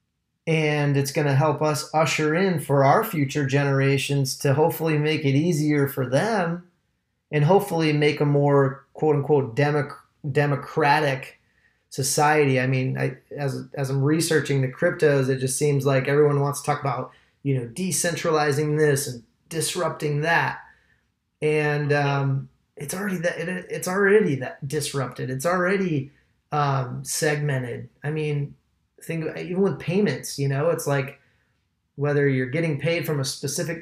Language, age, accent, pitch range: English, 30-49, American, 135-165 Hz